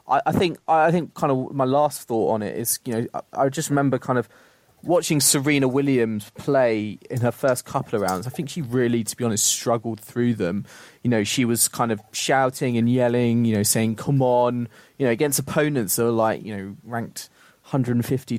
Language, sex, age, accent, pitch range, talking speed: English, male, 20-39, British, 110-125 Hz, 210 wpm